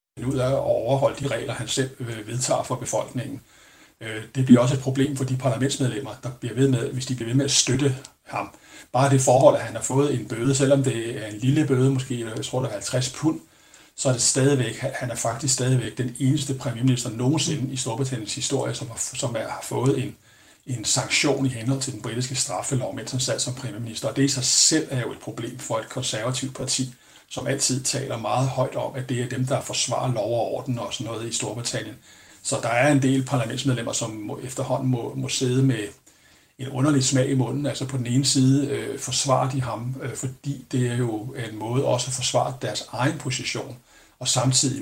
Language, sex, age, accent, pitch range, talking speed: Danish, male, 60-79, native, 125-135 Hz, 210 wpm